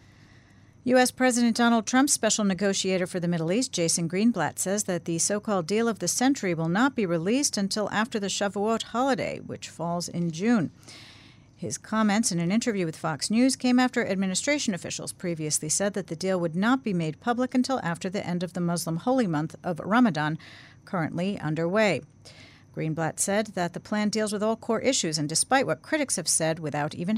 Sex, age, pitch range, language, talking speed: female, 50-69, 160-230 Hz, English, 190 wpm